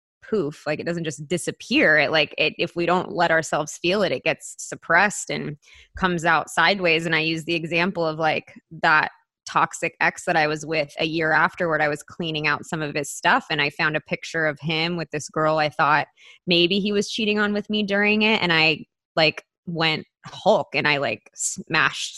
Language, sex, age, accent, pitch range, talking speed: English, female, 20-39, American, 155-180 Hz, 210 wpm